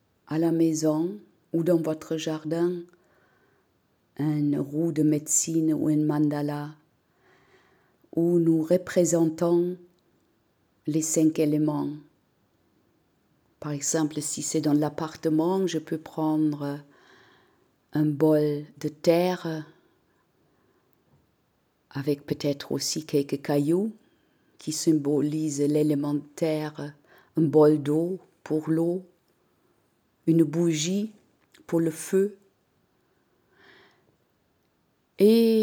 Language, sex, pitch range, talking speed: French, female, 150-170 Hz, 90 wpm